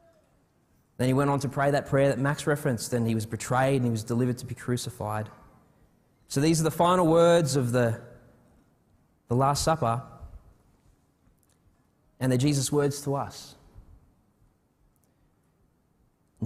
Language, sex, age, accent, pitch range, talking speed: English, male, 20-39, Australian, 115-145 Hz, 145 wpm